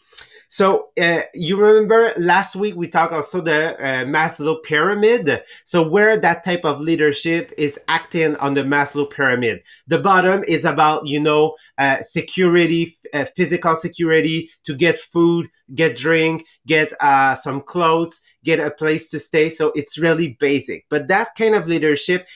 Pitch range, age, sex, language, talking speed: 145-170 Hz, 30-49, male, English, 160 wpm